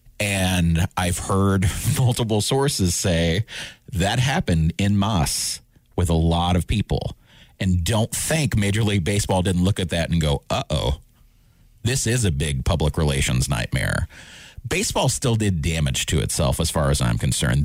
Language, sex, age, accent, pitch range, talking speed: English, male, 40-59, American, 85-115 Hz, 160 wpm